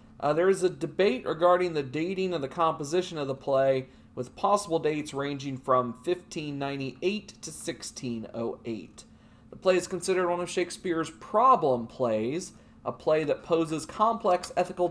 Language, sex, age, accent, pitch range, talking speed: English, male, 40-59, American, 120-180 Hz, 150 wpm